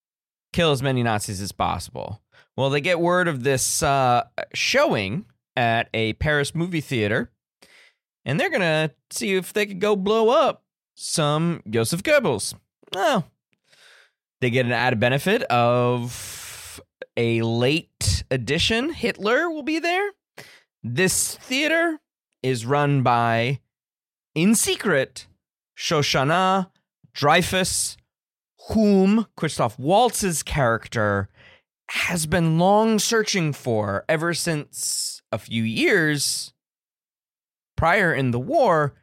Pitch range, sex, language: 115-185 Hz, male, English